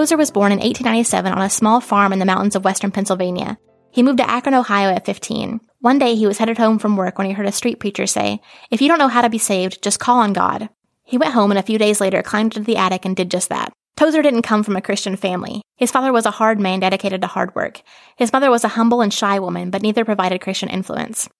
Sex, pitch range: female, 195-235 Hz